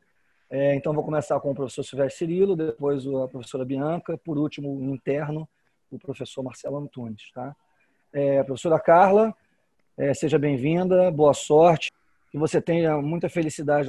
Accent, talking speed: Brazilian, 135 wpm